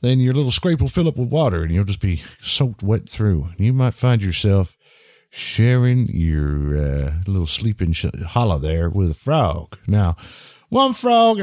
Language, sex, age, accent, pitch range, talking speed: English, male, 50-69, American, 100-155 Hz, 175 wpm